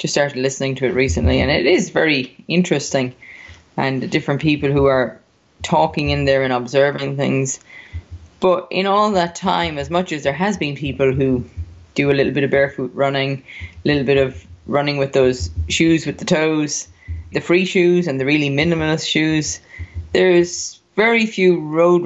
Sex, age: female, 20-39